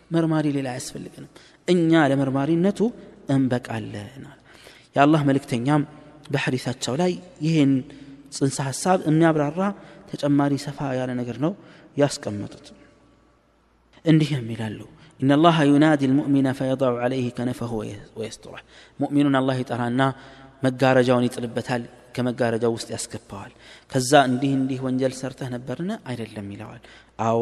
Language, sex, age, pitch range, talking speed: Amharic, male, 30-49, 120-150 Hz, 125 wpm